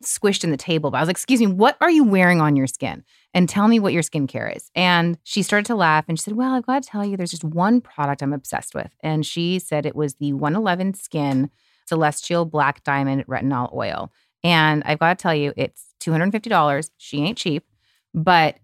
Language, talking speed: English, 225 wpm